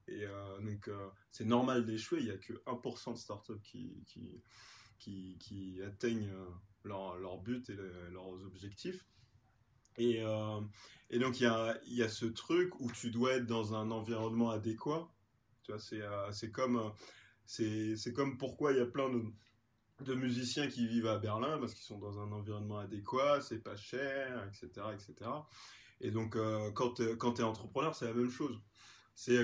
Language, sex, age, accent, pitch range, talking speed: English, male, 20-39, French, 105-125 Hz, 185 wpm